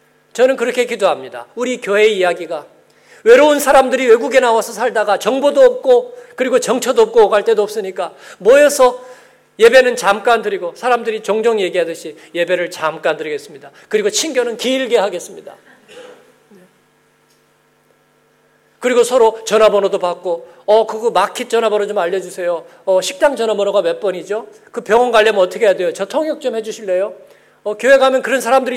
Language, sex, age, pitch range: Korean, male, 40-59, 195-270 Hz